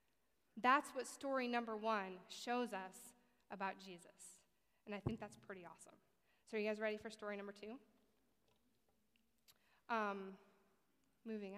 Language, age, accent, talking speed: English, 20-39, American, 135 wpm